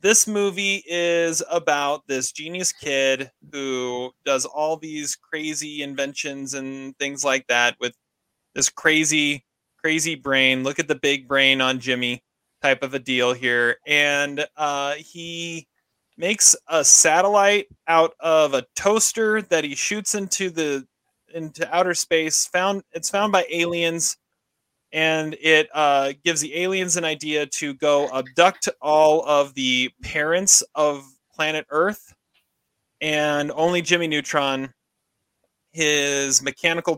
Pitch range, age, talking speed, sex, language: 135-165 Hz, 30-49, 130 wpm, male, English